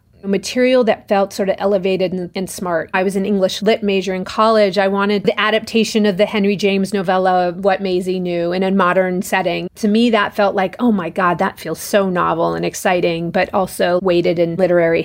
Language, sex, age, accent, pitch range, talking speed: English, female, 30-49, American, 185-220 Hz, 205 wpm